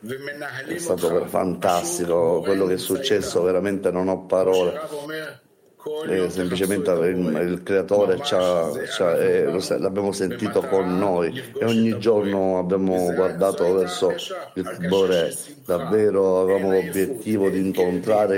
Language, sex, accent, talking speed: Italian, male, native, 105 wpm